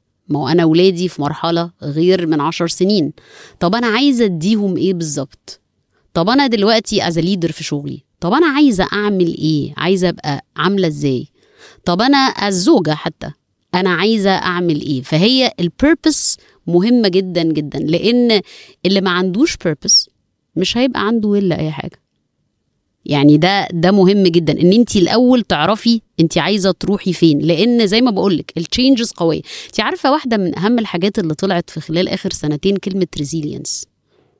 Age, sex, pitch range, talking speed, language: 20-39, female, 160-215 Hz, 155 wpm, Arabic